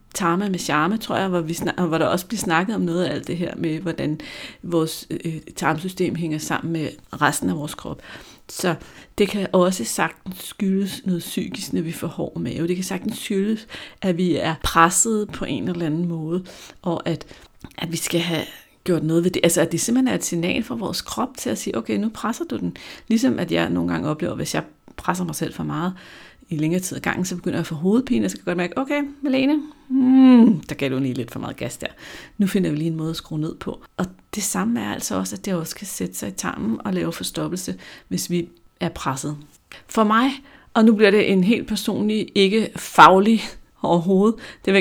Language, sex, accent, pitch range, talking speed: Danish, female, native, 160-205 Hz, 230 wpm